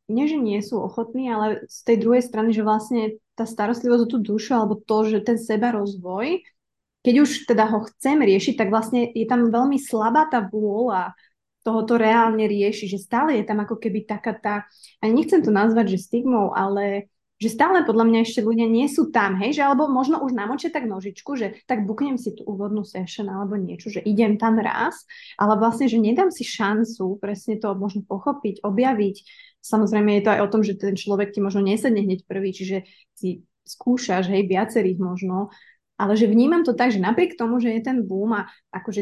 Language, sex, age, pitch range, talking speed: Slovak, female, 20-39, 200-240 Hz, 200 wpm